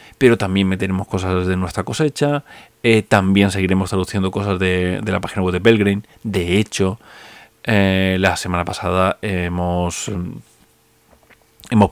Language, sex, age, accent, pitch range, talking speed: Spanish, male, 30-49, Spanish, 95-110 Hz, 135 wpm